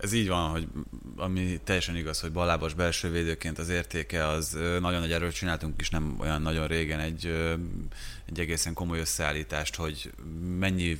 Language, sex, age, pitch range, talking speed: Hungarian, male, 30-49, 80-95 Hz, 165 wpm